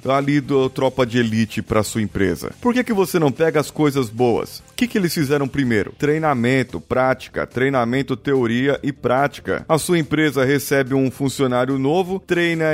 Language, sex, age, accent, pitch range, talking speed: Portuguese, male, 30-49, Brazilian, 120-155 Hz, 175 wpm